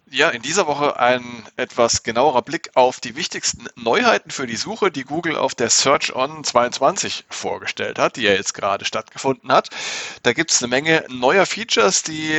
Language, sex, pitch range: German, male, 120-150 Hz